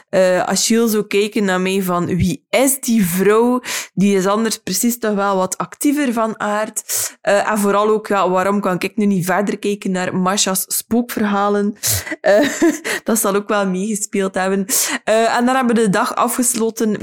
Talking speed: 180 wpm